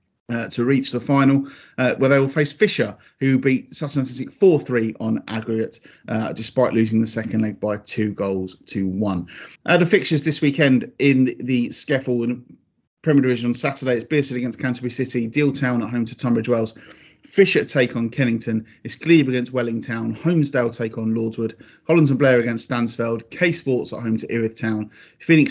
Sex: male